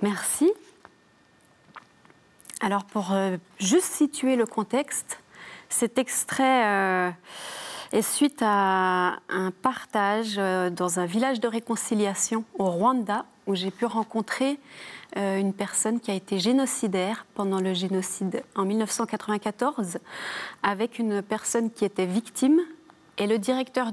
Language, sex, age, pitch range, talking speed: French, female, 30-49, 195-245 Hz, 115 wpm